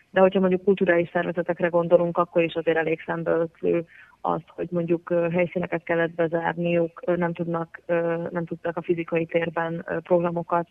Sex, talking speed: female, 135 wpm